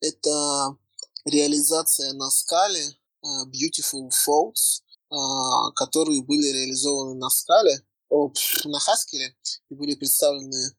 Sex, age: male, 20-39